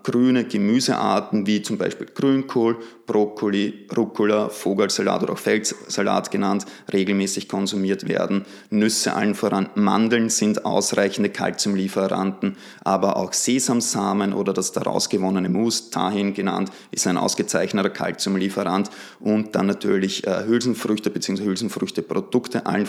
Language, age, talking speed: German, 20-39, 115 wpm